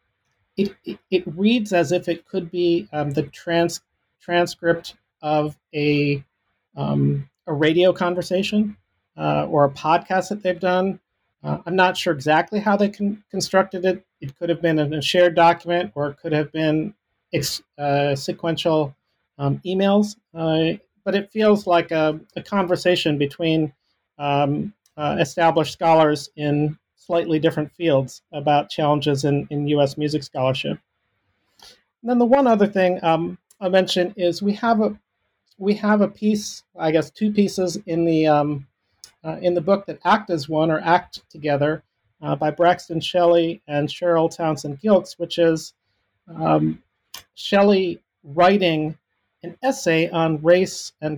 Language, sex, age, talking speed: English, male, 40-59, 155 wpm